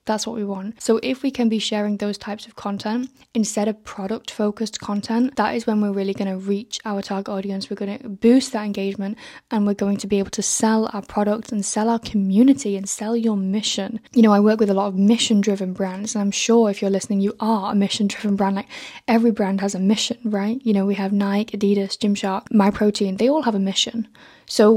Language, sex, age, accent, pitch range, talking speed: English, female, 10-29, British, 200-225 Hz, 230 wpm